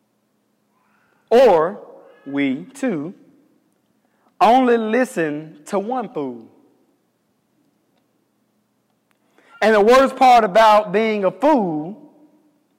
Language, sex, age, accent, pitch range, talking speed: English, male, 30-49, American, 170-225 Hz, 75 wpm